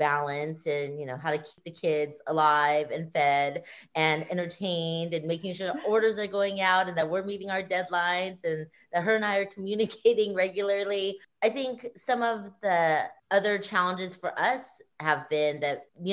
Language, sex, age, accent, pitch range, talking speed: English, female, 30-49, American, 155-205 Hz, 180 wpm